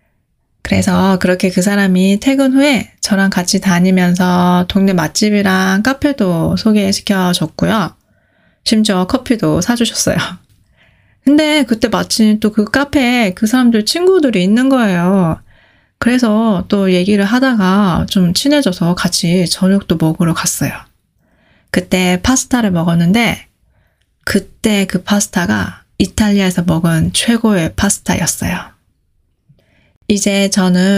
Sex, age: female, 20-39